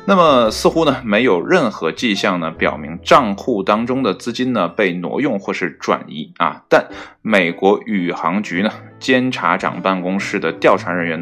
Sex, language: male, Chinese